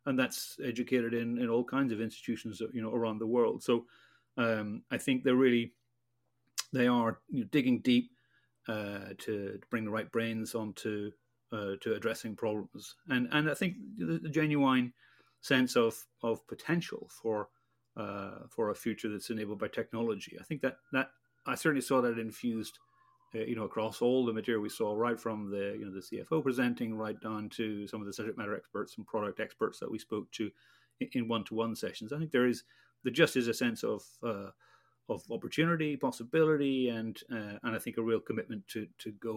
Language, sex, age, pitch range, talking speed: English, male, 40-59, 110-125 Hz, 200 wpm